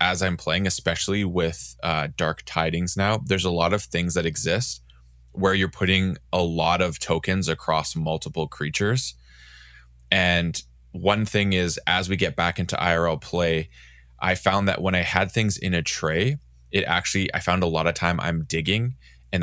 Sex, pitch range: male, 80-90 Hz